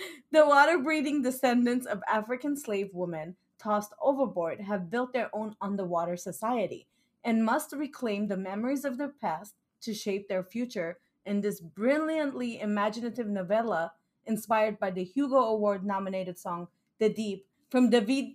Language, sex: English, female